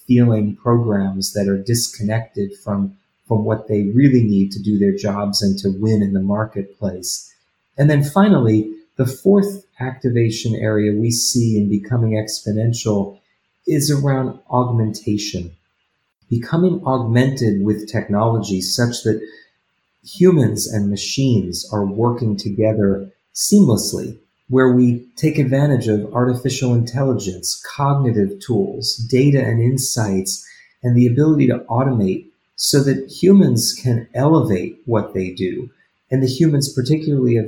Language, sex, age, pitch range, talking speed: Polish, male, 30-49, 100-130 Hz, 125 wpm